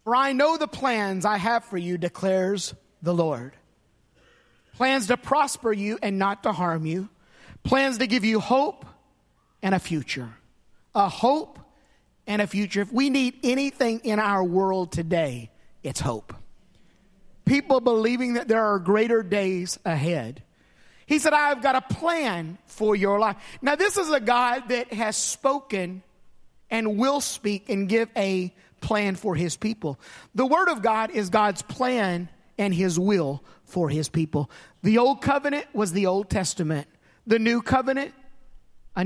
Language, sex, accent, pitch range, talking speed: English, male, American, 185-255 Hz, 160 wpm